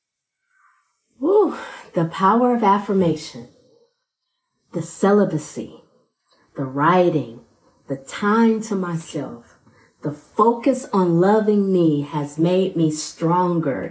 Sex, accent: female, American